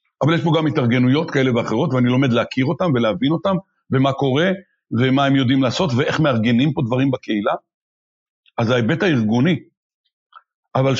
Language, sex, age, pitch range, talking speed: Hebrew, male, 60-79, 130-195 Hz, 155 wpm